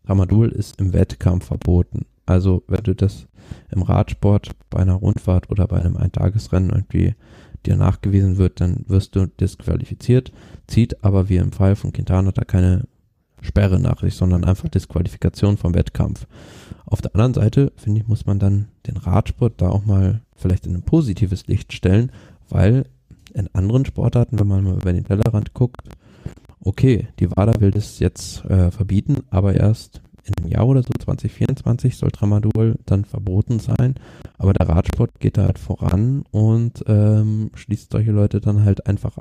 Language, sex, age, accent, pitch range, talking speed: German, male, 10-29, German, 95-110 Hz, 165 wpm